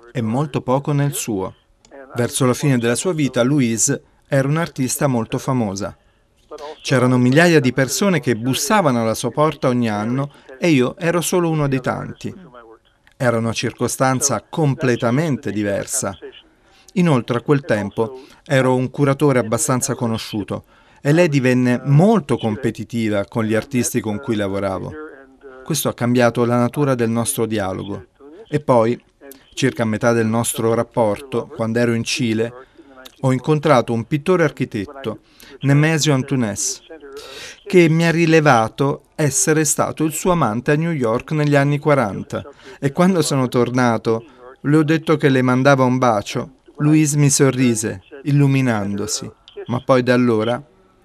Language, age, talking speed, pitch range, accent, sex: Italian, 40-59, 140 wpm, 115-150 Hz, native, male